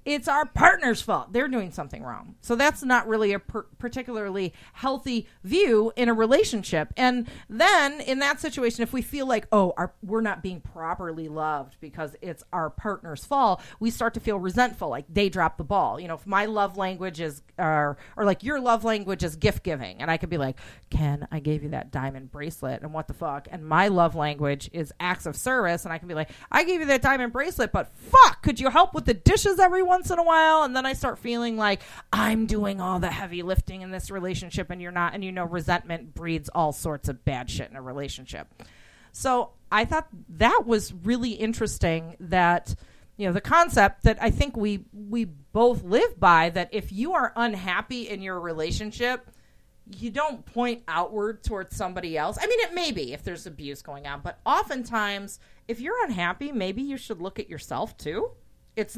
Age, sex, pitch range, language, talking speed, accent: 40-59, female, 175-245 Hz, English, 210 wpm, American